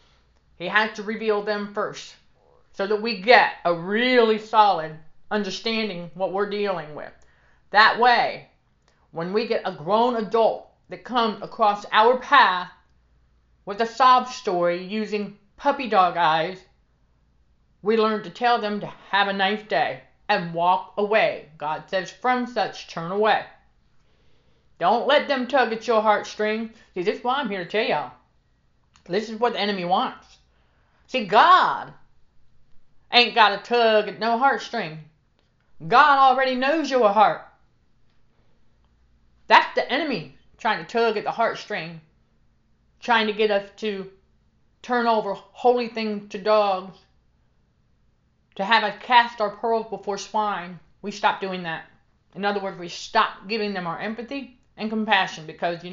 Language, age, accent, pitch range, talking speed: English, 40-59, American, 180-230 Hz, 150 wpm